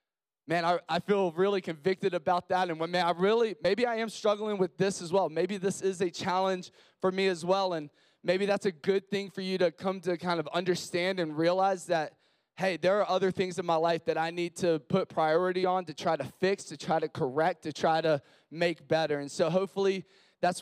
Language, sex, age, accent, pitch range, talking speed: English, male, 20-39, American, 175-200 Hz, 230 wpm